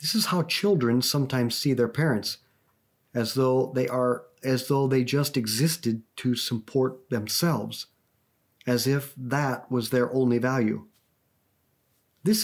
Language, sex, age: English, male, 50-69